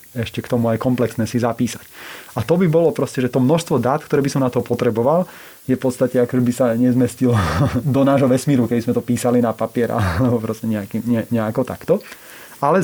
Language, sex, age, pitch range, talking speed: Slovak, male, 30-49, 115-130 Hz, 200 wpm